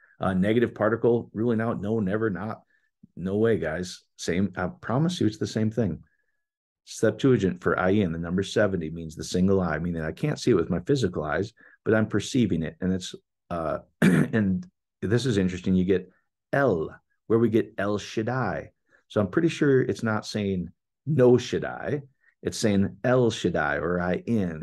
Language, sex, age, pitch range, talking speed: English, male, 40-59, 90-120 Hz, 190 wpm